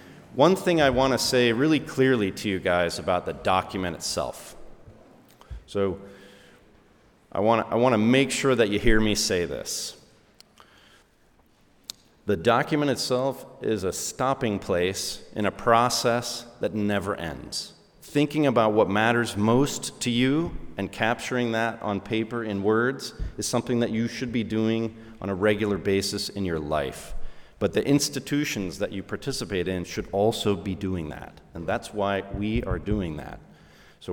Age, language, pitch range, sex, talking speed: 30-49, English, 95-130 Hz, male, 155 wpm